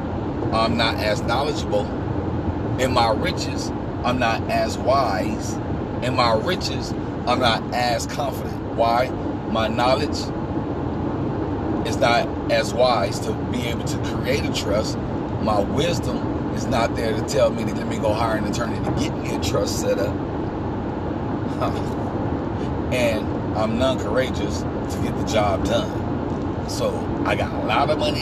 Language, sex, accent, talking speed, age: English, male, American, 145 wpm, 40-59